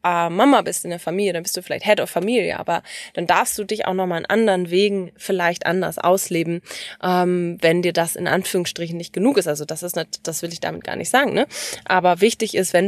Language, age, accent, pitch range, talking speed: English, 20-39, German, 170-205 Hz, 240 wpm